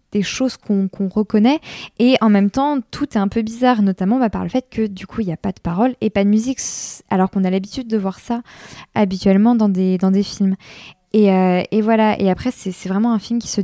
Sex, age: female, 20-39